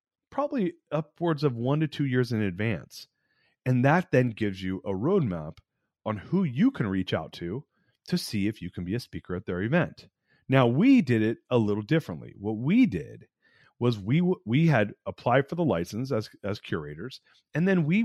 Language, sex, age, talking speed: English, male, 30-49, 195 wpm